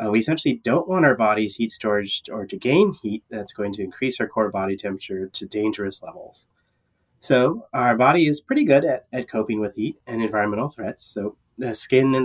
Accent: American